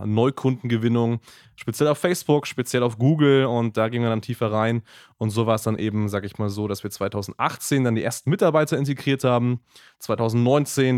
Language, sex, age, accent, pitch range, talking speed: German, male, 20-39, German, 110-135 Hz, 185 wpm